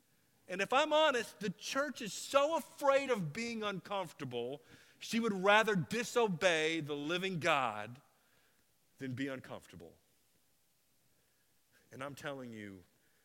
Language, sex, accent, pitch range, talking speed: English, male, American, 135-170 Hz, 120 wpm